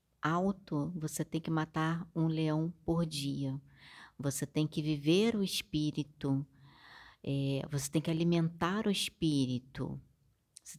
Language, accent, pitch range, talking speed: Portuguese, Brazilian, 145-165 Hz, 115 wpm